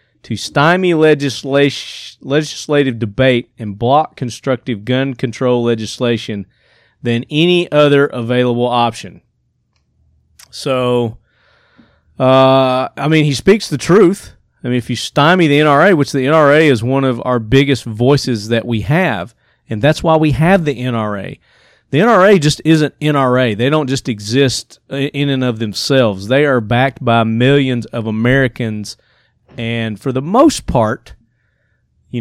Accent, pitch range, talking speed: American, 115-140 Hz, 140 wpm